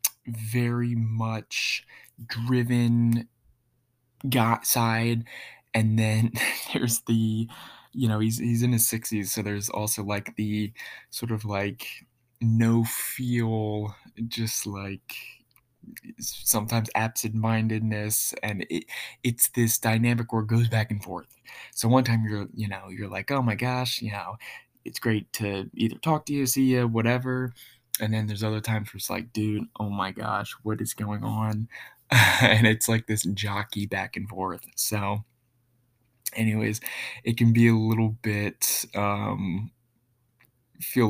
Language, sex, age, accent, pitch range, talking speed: English, male, 20-39, American, 105-120 Hz, 145 wpm